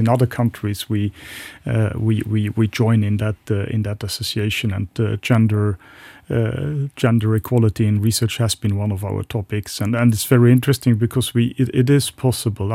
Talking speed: 190 wpm